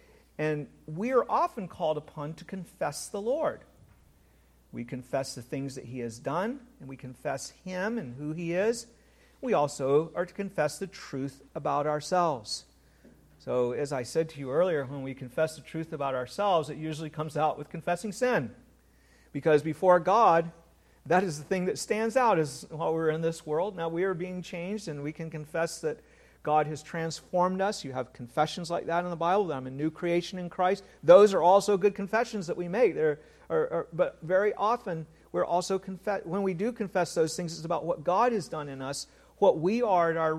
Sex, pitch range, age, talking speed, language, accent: male, 140-185 Hz, 50-69, 205 wpm, English, American